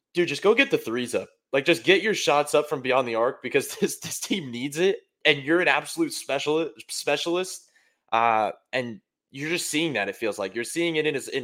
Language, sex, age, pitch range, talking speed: English, male, 20-39, 130-170 Hz, 230 wpm